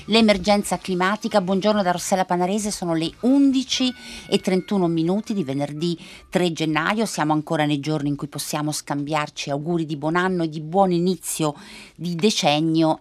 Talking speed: 155 wpm